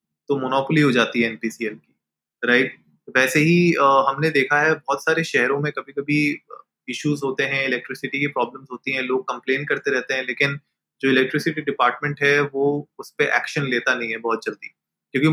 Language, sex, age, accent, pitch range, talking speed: Hindi, male, 20-39, native, 130-155 Hz, 190 wpm